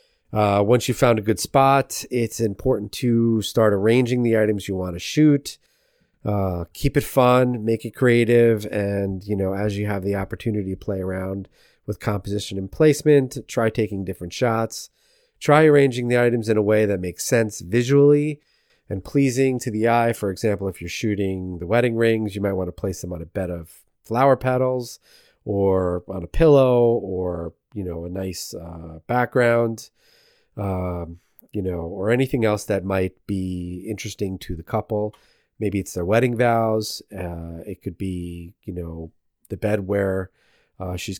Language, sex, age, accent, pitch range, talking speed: English, male, 30-49, American, 95-125 Hz, 175 wpm